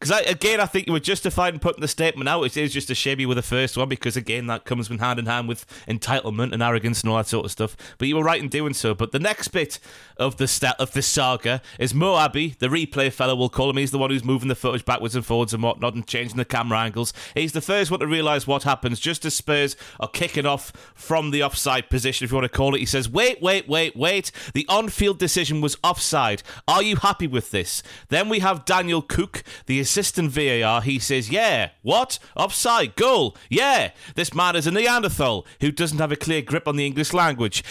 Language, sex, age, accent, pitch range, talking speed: English, male, 30-49, British, 125-165 Hz, 245 wpm